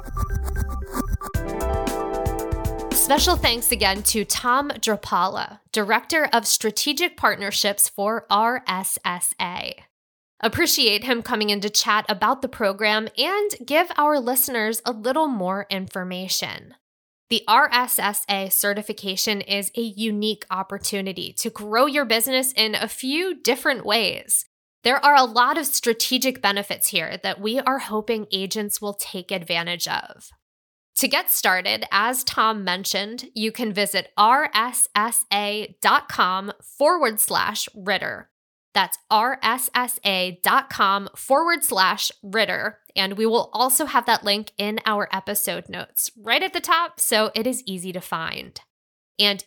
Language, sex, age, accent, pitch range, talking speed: English, female, 10-29, American, 200-260 Hz, 125 wpm